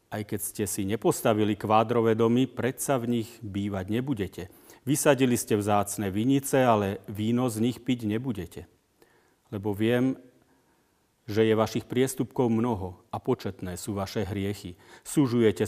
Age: 40-59